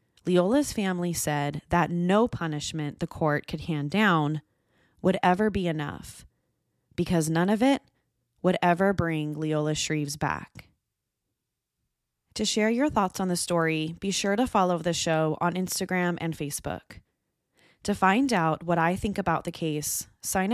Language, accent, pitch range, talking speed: English, American, 155-195 Hz, 150 wpm